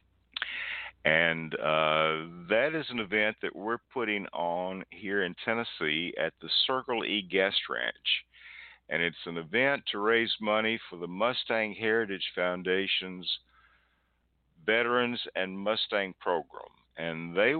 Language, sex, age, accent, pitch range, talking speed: English, male, 50-69, American, 80-100 Hz, 125 wpm